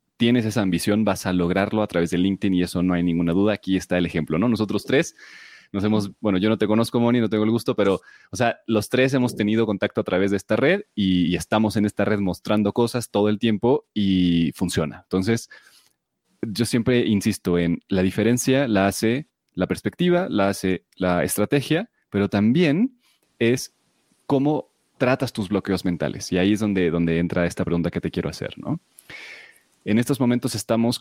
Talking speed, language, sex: 195 wpm, Spanish, male